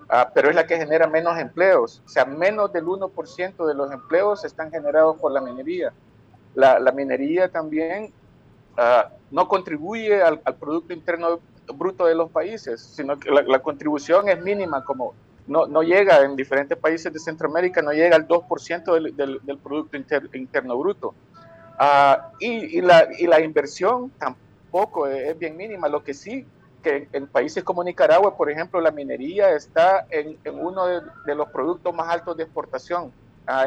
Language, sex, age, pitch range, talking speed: Spanish, male, 50-69, 150-185 Hz, 175 wpm